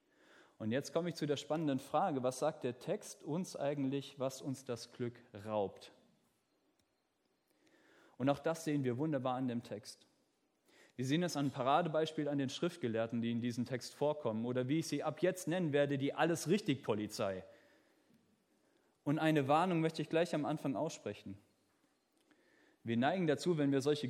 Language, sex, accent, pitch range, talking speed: German, male, German, 130-170 Hz, 165 wpm